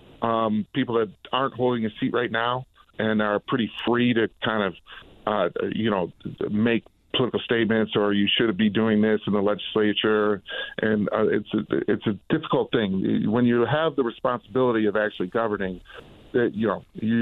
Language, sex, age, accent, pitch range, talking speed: English, male, 50-69, American, 100-115 Hz, 180 wpm